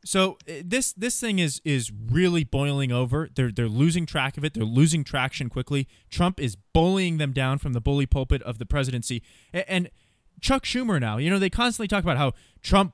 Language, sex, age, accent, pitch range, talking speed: English, male, 20-39, American, 115-165 Hz, 200 wpm